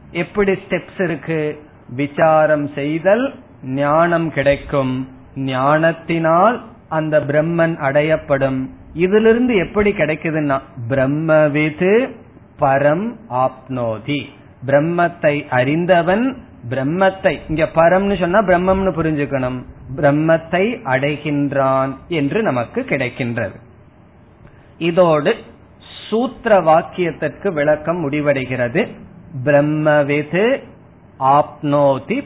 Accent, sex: native, male